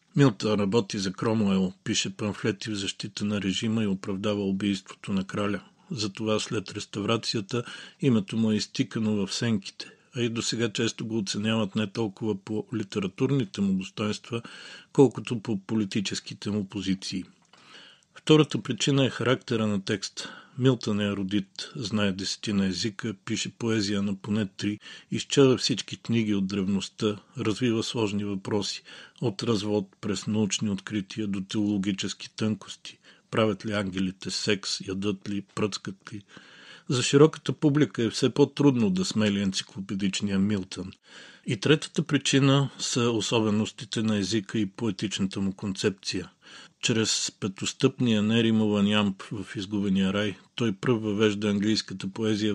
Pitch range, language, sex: 100-125 Hz, Bulgarian, male